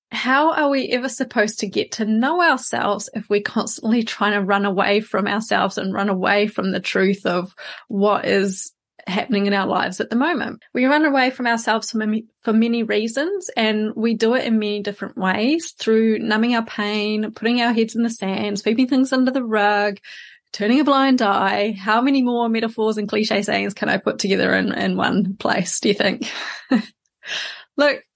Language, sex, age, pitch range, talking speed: English, female, 20-39, 210-255 Hz, 190 wpm